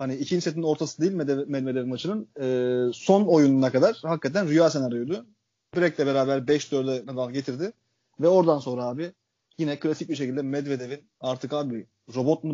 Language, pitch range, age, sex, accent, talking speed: Turkish, 130-165 Hz, 30-49, male, native, 160 wpm